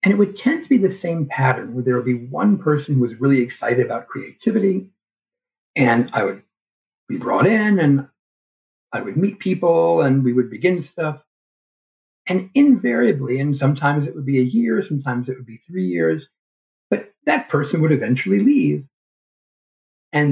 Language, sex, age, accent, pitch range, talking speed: English, male, 50-69, American, 125-185 Hz, 175 wpm